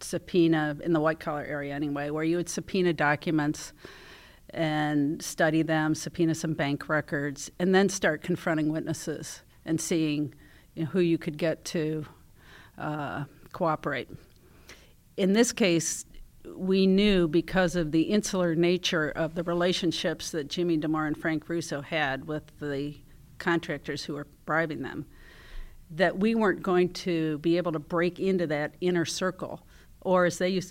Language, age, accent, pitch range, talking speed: English, 50-69, American, 155-180 Hz, 150 wpm